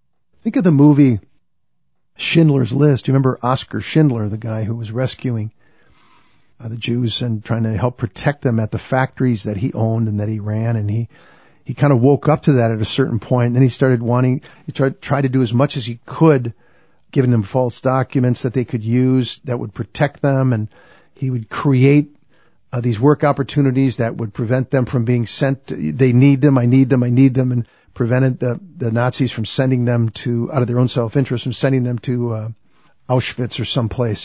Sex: male